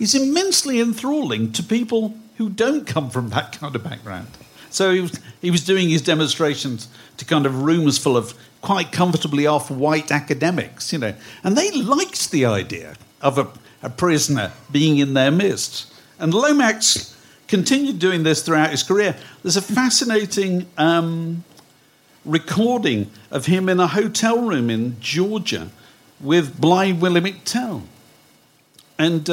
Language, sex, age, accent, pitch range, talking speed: English, male, 50-69, British, 130-190 Hz, 145 wpm